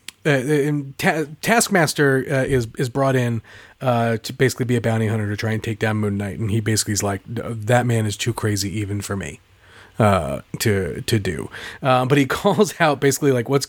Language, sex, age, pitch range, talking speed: English, male, 30-49, 115-145 Hz, 210 wpm